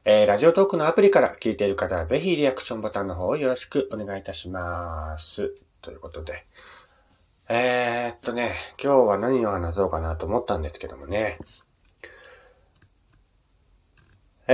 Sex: male